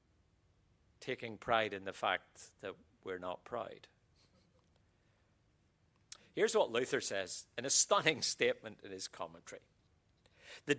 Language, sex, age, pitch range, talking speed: English, male, 50-69, 105-155 Hz, 115 wpm